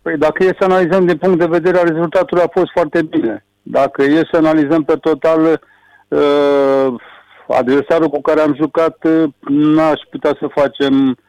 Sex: male